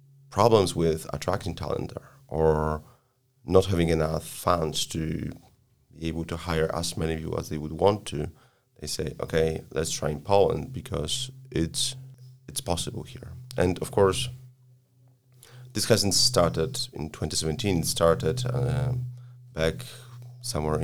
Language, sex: English, male